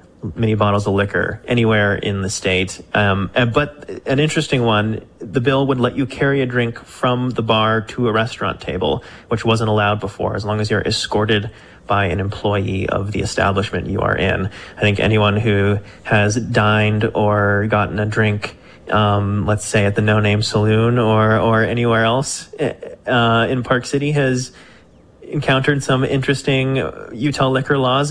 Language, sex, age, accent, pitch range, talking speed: English, male, 30-49, American, 105-125 Hz, 170 wpm